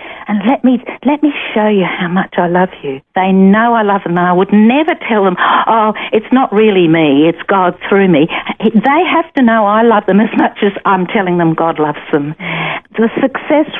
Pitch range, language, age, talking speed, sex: 180-230 Hz, English, 60-79, 215 wpm, female